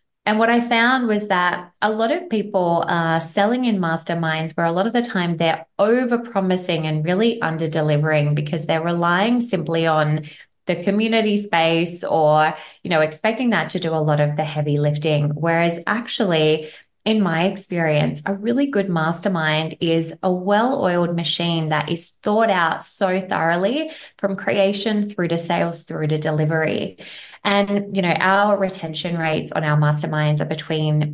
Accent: Australian